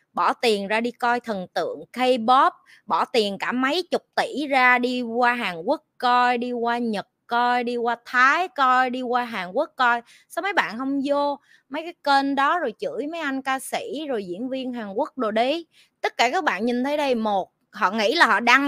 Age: 20-39